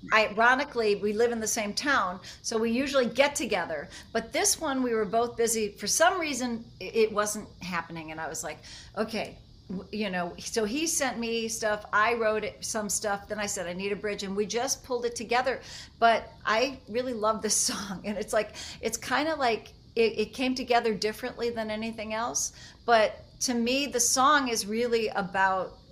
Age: 40-59